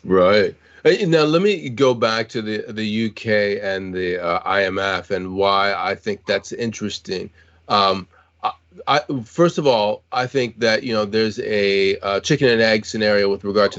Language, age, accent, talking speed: English, 30-49, American, 180 wpm